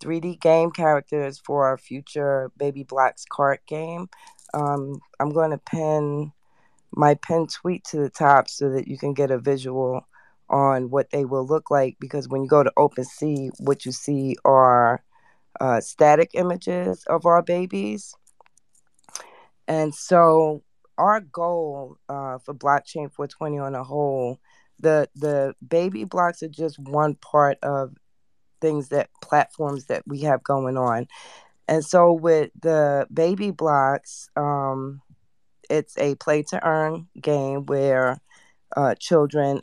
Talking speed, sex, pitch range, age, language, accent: 140 wpm, female, 135-160 Hz, 20-39, English, American